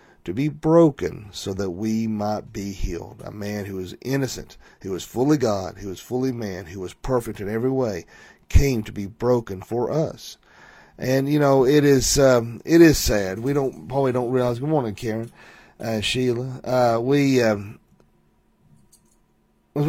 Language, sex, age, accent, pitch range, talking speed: English, male, 40-59, American, 105-130 Hz, 170 wpm